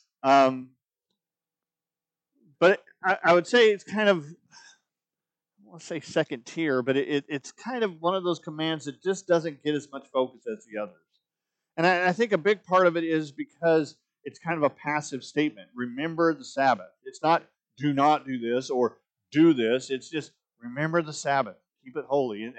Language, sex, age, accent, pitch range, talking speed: English, male, 40-59, American, 145-190 Hz, 185 wpm